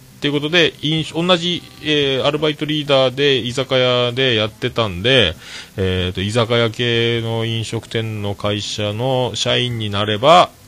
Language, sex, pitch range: Japanese, male, 95-135 Hz